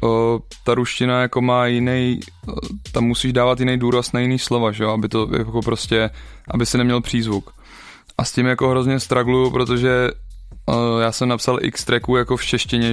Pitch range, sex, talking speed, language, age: 110-120 Hz, male, 175 wpm, Czech, 20-39